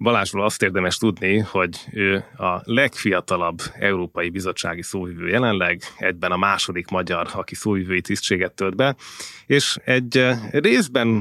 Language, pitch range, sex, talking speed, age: Hungarian, 90-110 Hz, male, 130 wpm, 30-49